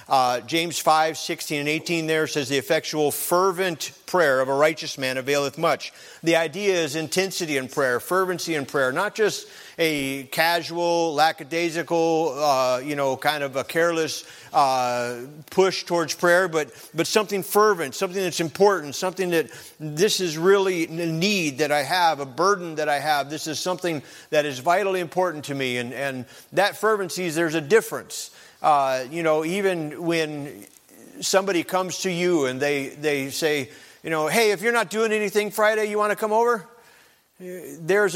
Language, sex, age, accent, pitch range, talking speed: English, male, 50-69, American, 150-190 Hz, 175 wpm